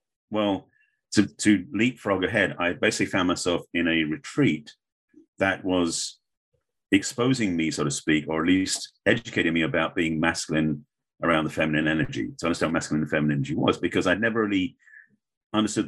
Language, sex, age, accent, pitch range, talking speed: English, male, 40-59, British, 80-105 Hz, 165 wpm